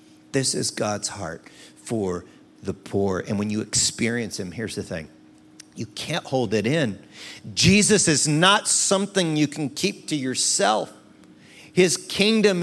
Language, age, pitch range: English, 50-69, 105-150 Hz